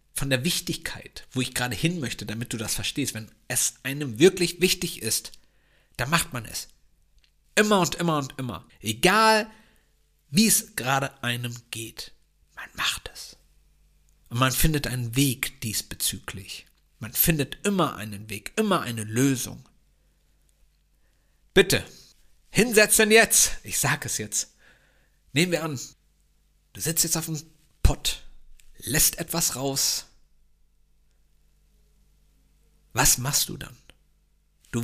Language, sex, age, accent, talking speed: German, male, 50-69, German, 125 wpm